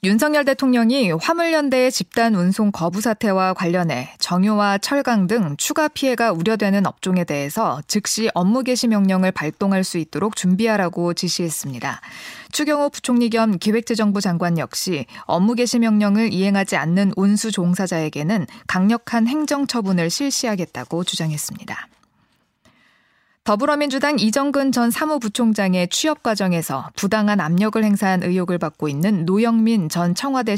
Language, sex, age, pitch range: Korean, female, 20-39, 180-235 Hz